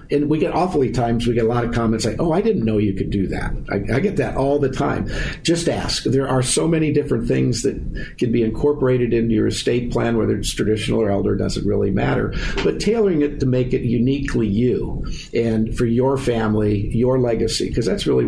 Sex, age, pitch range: male, 50-69, 110-130 Hz